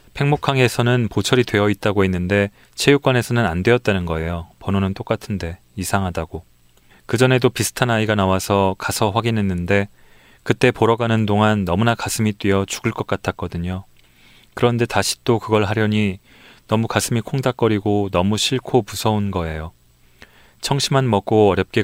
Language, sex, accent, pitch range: Korean, male, native, 90-115 Hz